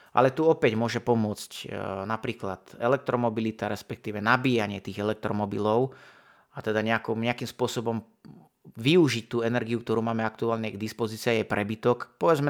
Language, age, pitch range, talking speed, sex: Slovak, 30-49, 110-125 Hz, 125 wpm, male